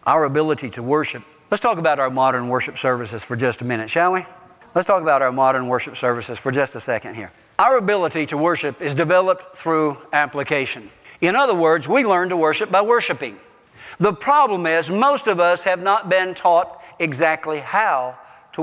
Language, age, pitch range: English, 60-79, 160-225 Hz